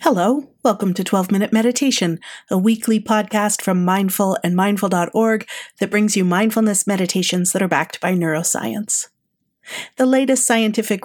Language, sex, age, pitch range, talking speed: English, female, 40-59, 175-220 Hz, 135 wpm